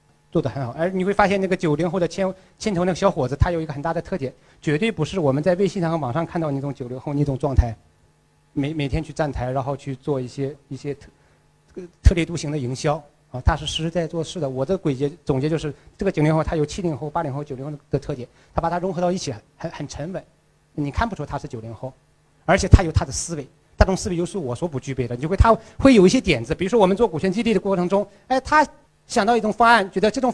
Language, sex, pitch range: Chinese, male, 145-220 Hz